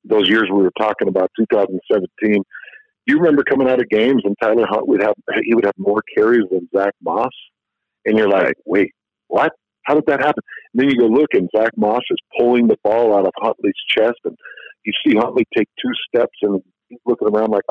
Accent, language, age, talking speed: American, English, 50-69, 215 wpm